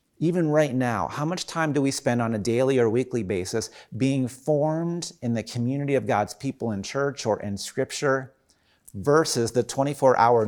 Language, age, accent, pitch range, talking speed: English, 30-49, American, 110-140 Hz, 180 wpm